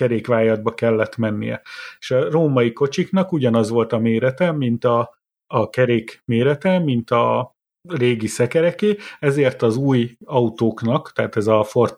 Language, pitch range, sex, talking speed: Hungarian, 115-145 Hz, male, 140 wpm